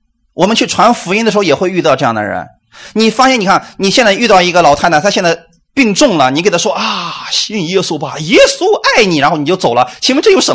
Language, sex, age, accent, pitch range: Chinese, male, 30-49, native, 130-205 Hz